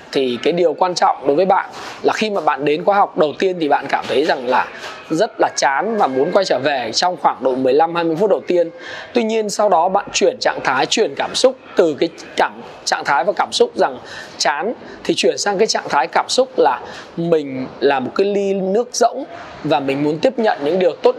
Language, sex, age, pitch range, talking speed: Vietnamese, male, 20-39, 180-260 Hz, 235 wpm